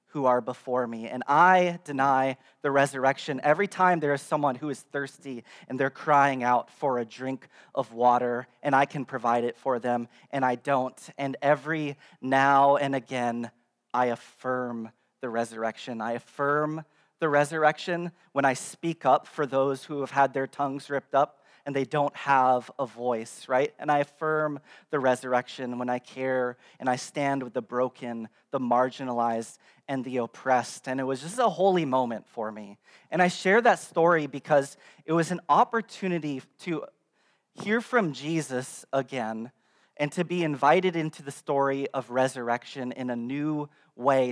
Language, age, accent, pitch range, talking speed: English, 30-49, American, 125-150 Hz, 170 wpm